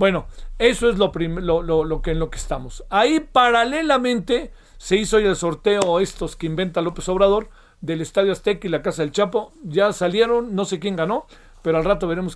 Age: 50-69